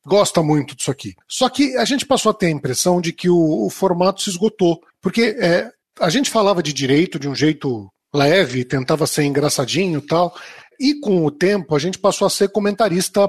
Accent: Brazilian